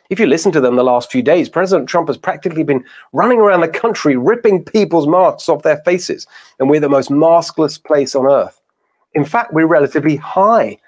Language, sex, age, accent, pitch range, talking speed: English, male, 40-59, British, 140-205 Hz, 205 wpm